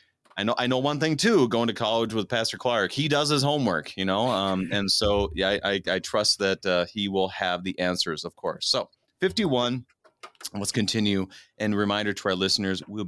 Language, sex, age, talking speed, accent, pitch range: English, male, 30-49, 210 wpm, American, 95-120 Hz